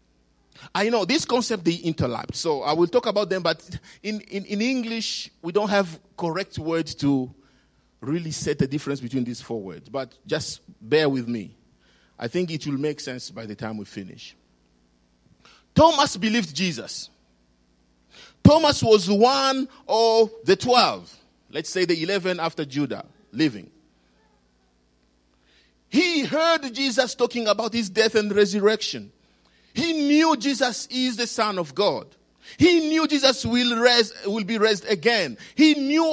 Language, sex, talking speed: English, male, 150 wpm